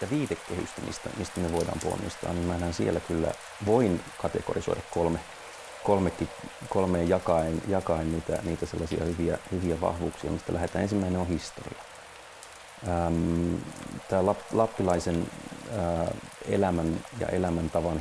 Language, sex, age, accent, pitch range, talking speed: Finnish, male, 40-59, native, 85-100 Hz, 105 wpm